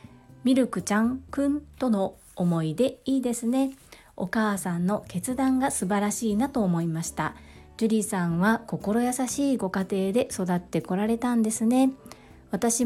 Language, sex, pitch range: Japanese, female, 180-235 Hz